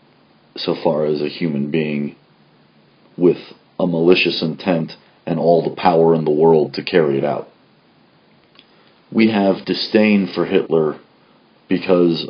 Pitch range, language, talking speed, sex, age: 80-90 Hz, English, 130 wpm, male, 30-49